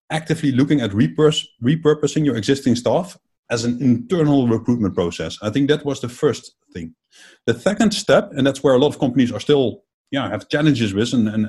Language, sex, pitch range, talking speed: English, male, 115-150 Hz, 195 wpm